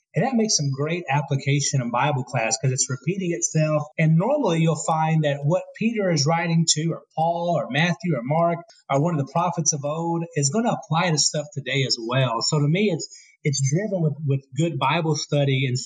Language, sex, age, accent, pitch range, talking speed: English, male, 30-49, American, 135-170 Hz, 215 wpm